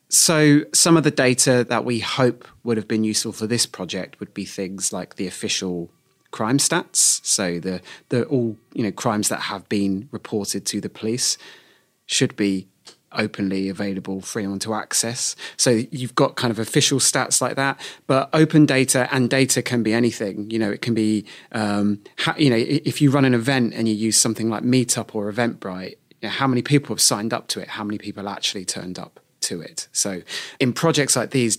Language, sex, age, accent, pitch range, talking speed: English, male, 30-49, British, 105-135 Hz, 200 wpm